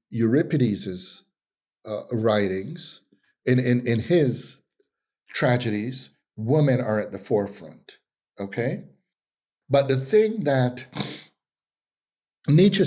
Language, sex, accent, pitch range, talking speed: English, male, American, 100-140 Hz, 90 wpm